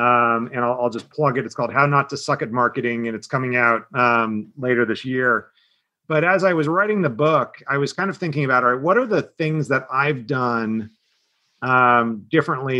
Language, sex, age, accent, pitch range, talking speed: English, male, 40-59, American, 125-155 Hz, 220 wpm